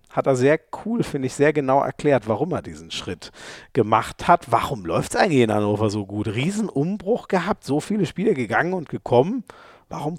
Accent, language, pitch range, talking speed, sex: German, German, 120-160 Hz, 190 wpm, male